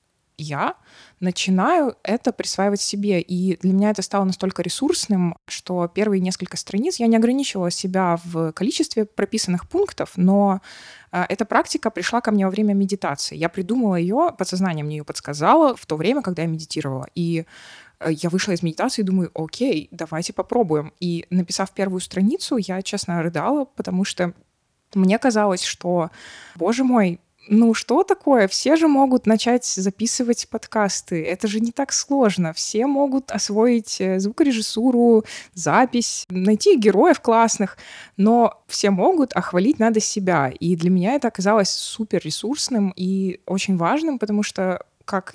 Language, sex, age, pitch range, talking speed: Russian, female, 20-39, 175-230 Hz, 145 wpm